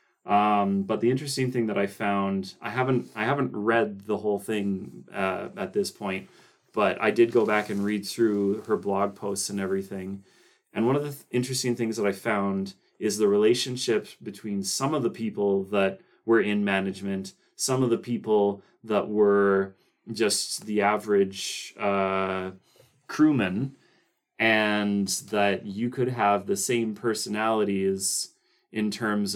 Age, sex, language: 30-49, male, English